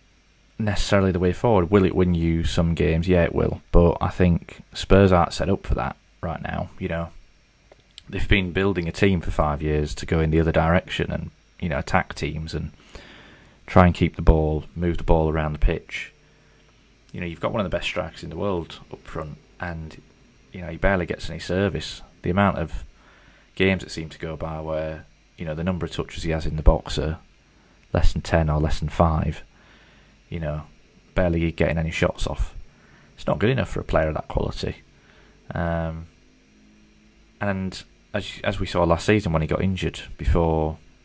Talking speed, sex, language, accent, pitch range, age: 200 wpm, male, English, British, 80-90 Hz, 20-39